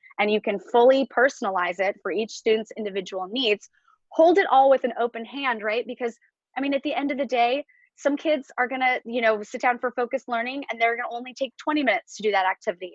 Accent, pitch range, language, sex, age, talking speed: American, 215-275 Hz, English, female, 20-39, 230 wpm